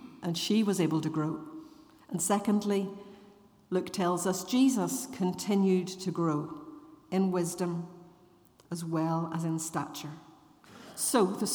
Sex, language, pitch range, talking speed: female, English, 170-230 Hz, 125 wpm